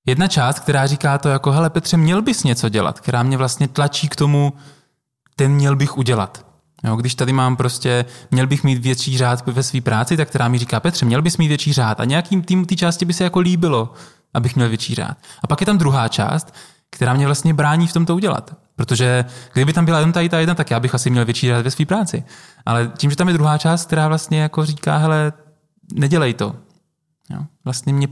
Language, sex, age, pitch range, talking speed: Czech, male, 20-39, 125-165 Hz, 220 wpm